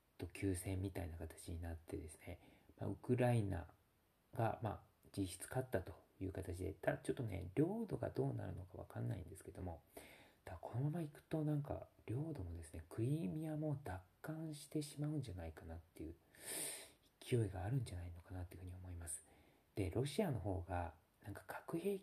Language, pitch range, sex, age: Japanese, 90-130 Hz, male, 40-59